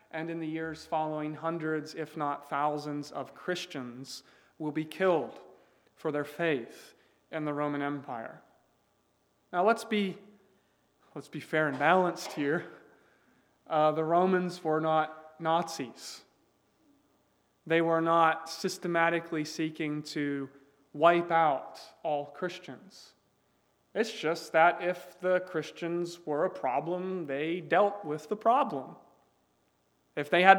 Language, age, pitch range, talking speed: English, 30-49, 150-180 Hz, 120 wpm